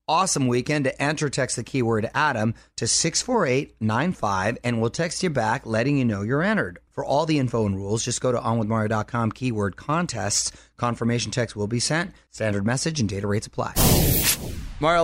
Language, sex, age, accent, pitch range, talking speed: English, male, 30-49, American, 115-155 Hz, 175 wpm